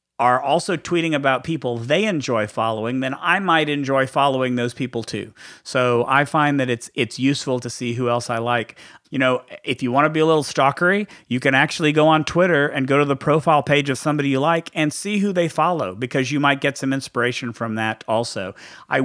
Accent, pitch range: American, 125-160 Hz